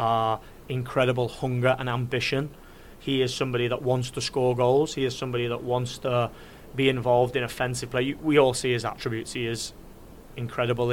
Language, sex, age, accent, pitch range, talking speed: English, male, 30-49, British, 115-125 Hz, 180 wpm